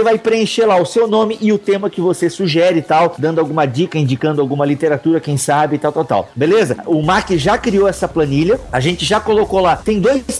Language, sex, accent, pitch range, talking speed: Portuguese, male, Brazilian, 150-200 Hz, 230 wpm